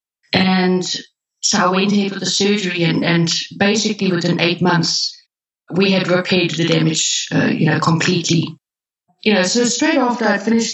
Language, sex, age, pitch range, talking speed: English, female, 30-49, 170-200 Hz, 170 wpm